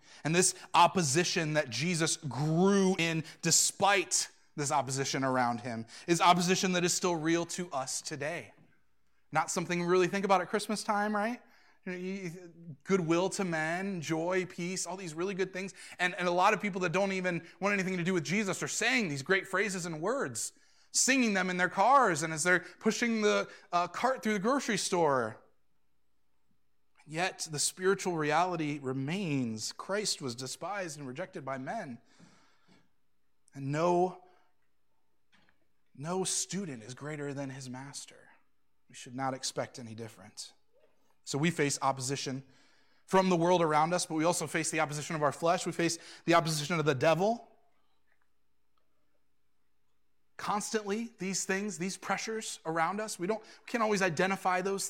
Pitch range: 145-195 Hz